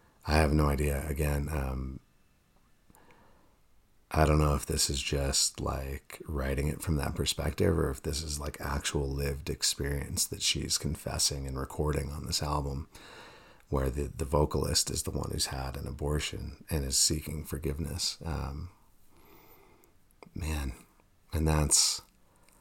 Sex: male